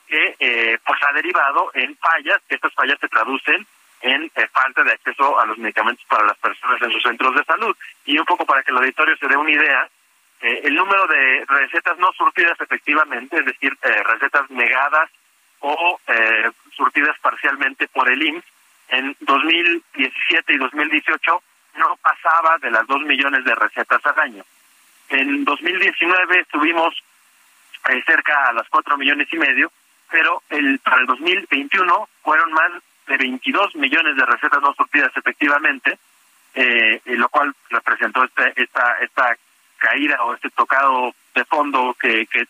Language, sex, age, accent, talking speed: Spanish, male, 40-59, Mexican, 160 wpm